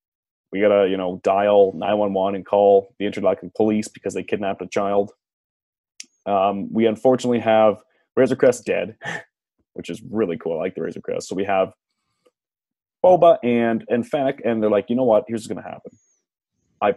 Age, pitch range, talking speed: 30-49, 105-145 Hz, 185 wpm